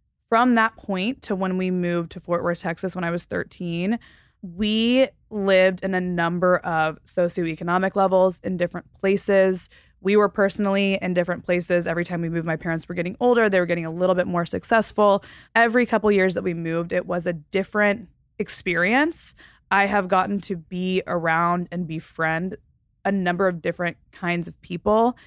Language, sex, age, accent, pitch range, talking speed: English, female, 20-39, American, 175-205 Hz, 180 wpm